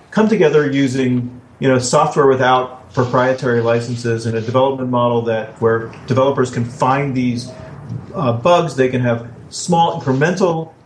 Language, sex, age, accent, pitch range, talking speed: English, male, 40-59, American, 125-155 Hz, 145 wpm